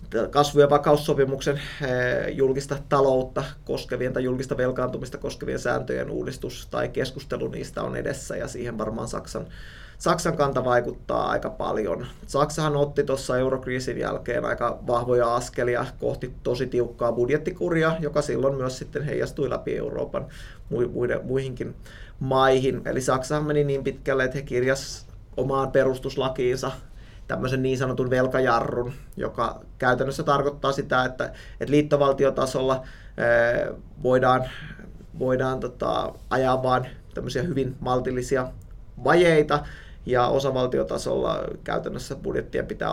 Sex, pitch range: male, 125-140 Hz